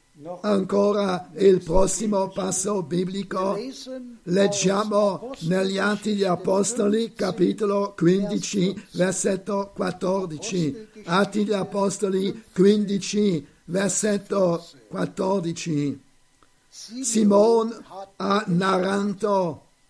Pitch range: 185-205 Hz